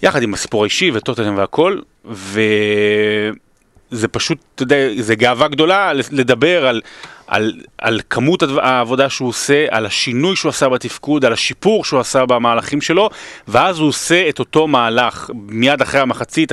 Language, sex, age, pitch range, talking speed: Hebrew, male, 30-49, 120-155 Hz, 145 wpm